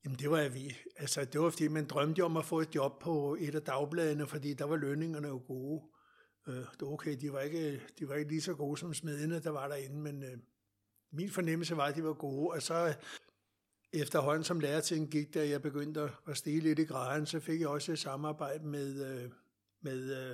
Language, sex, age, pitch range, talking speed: Danish, male, 60-79, 140-160 Hz, 225 wpm